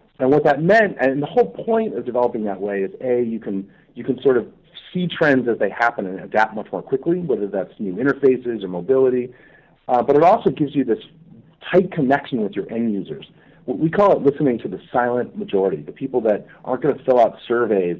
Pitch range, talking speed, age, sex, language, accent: 105-140 Hz, 220 wpm, 40-59, male, English, American